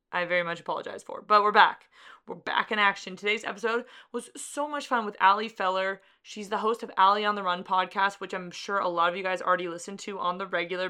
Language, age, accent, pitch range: English, 20-39, American, 190-225 Hz